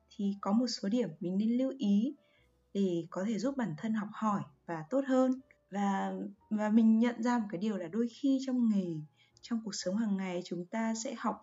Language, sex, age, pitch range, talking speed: Vietnamese, female, 20-39, 195-260 Hz, 220 wpm